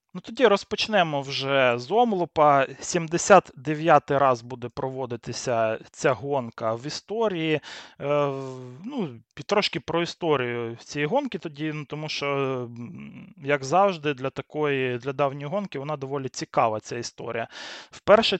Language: Ukrainian